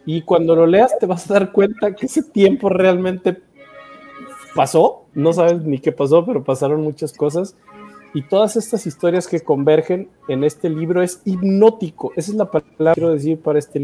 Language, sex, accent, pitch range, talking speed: Spanish, male, Mexican, 140-175 Hz, 185 wpm